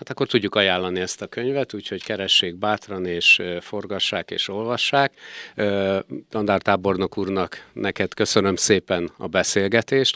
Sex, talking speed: male, 125 wpm